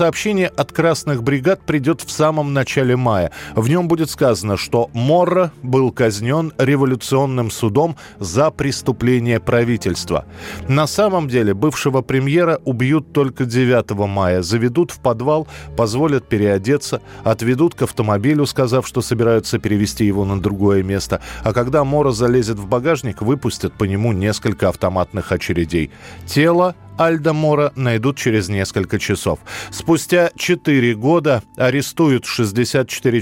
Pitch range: 110-150 Hz